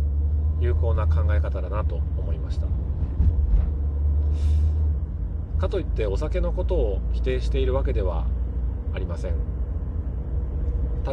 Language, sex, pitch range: Japanese, male, 70-80 Hz